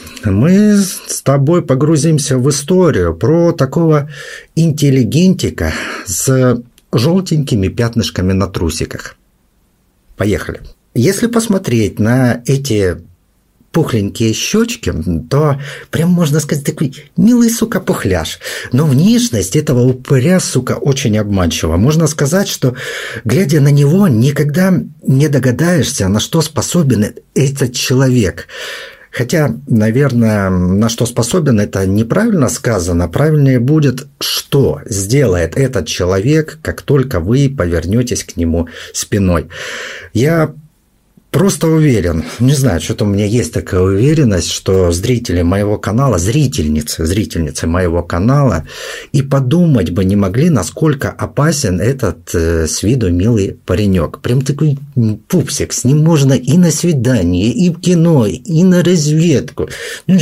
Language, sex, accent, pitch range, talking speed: Russian, male, native, 105-160 Hz, 120 wpm